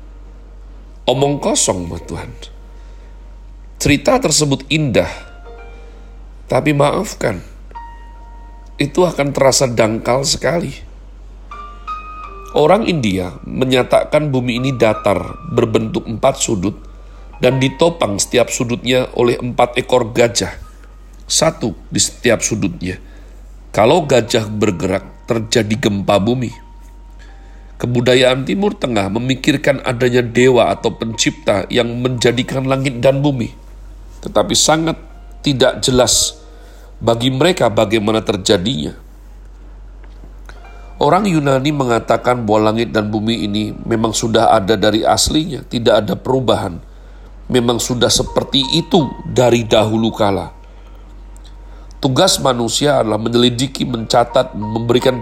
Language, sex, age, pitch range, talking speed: Indonesian, male, 40-59, 105-135 Hz, 100 wpm